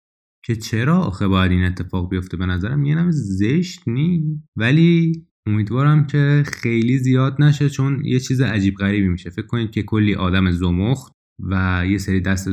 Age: 20-39